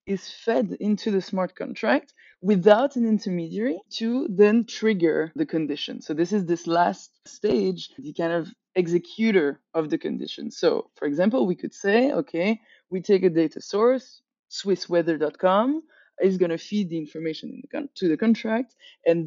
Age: 20-39